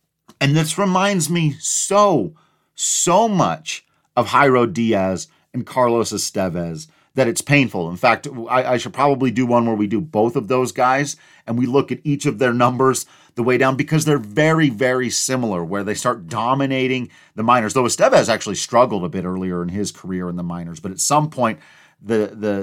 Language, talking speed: English, 190 wpm